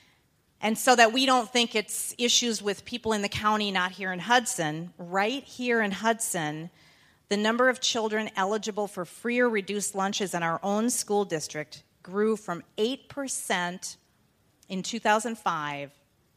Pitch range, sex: 175-220 Hz, female